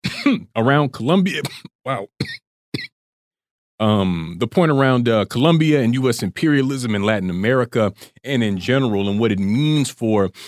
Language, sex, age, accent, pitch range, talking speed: English, male, 40-59, American, 105-135 Hz, 130 wpm